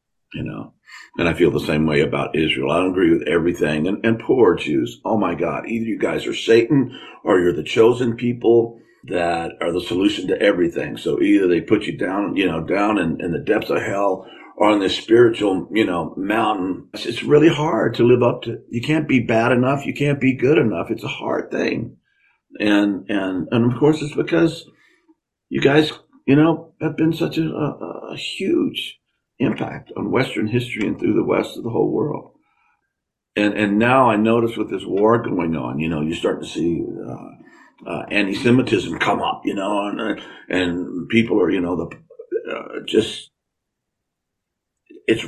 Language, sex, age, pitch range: English, male, 50-69, 105-165 Hz